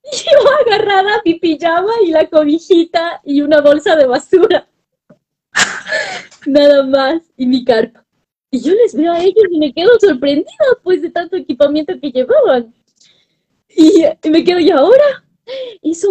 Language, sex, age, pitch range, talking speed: Spanish, female, 20-39, 205-310 Hz, 155 wpm